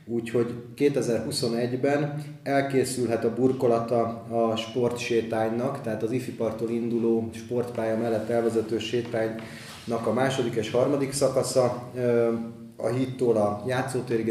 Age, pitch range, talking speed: 30-49, 110-120 Hz, 100 wpm